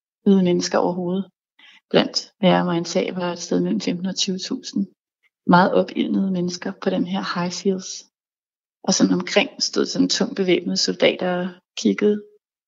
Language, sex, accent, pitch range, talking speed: Danish, female, native, 180-210 Hz, 145 wpm